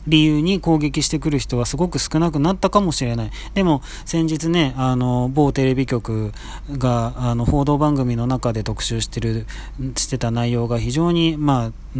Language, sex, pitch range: Japanese, male, 115-155 Hz